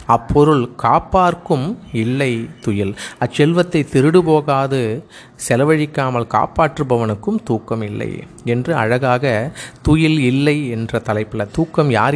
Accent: native